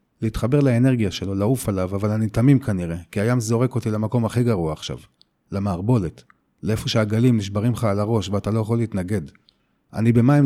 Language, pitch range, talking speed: Hebrew, 105-130 Hz, 170 wpm